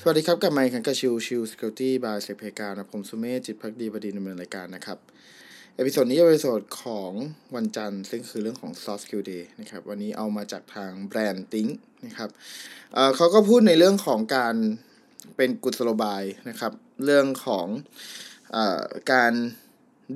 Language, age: Thai, 20-39